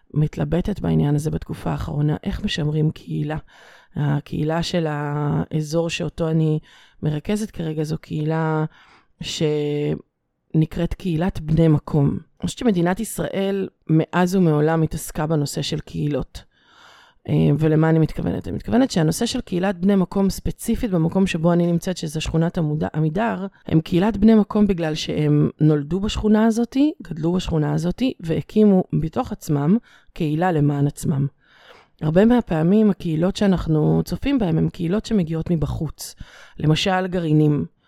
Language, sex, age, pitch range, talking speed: Hebrew, female, 30-49, 155-195 Hz, 125 wpm